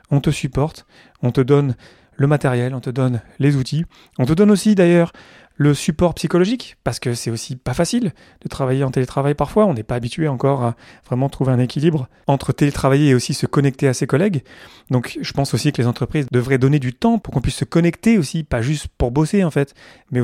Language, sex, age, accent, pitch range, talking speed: French, male, 30-49, French, 130-170 Hz, 220 wpm